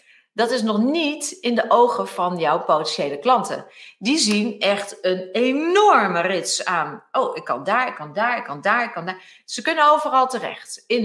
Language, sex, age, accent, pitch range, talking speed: Dutch, female, 40-59, Dutch, 185-245 Hz, 195 wpm